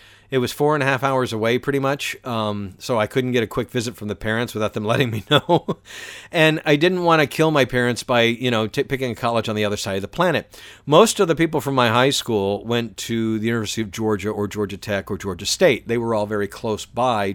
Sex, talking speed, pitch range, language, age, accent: male, 255 wpm, 105-130 Hz, English, 50-69, American